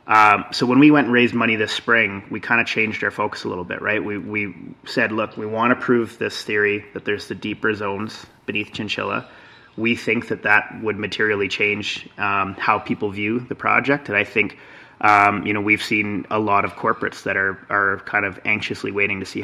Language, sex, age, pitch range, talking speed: English, male, 30-49, 100-110 Hz, 220 wpm